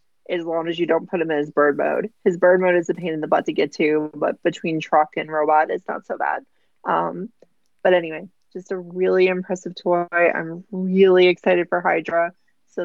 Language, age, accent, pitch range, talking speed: English, 20-39, American, 165-200 Hz, 215 wpm